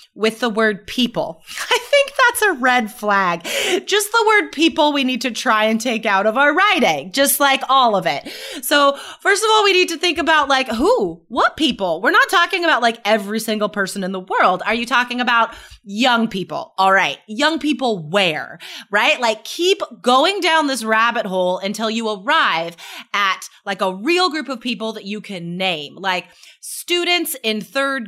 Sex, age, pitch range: female, 30-49, 210-310 Hz